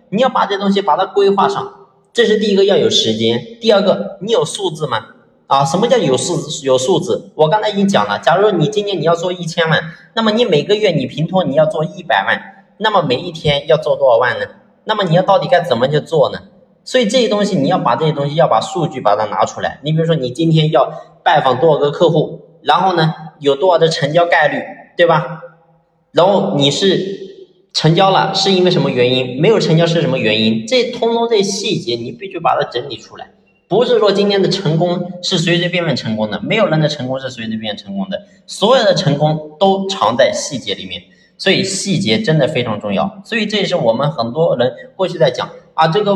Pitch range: 155-200 Hz